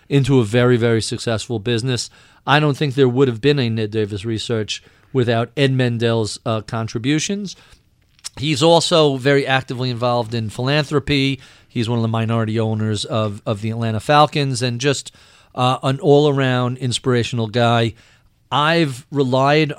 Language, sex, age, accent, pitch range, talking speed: English, male, 40-59, American, 115-140 Hz, 150 wpm